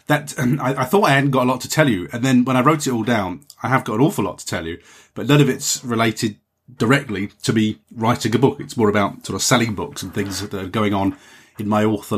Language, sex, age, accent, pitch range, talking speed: English, male, 30-49, British, 100-130 Hz, 280 wpm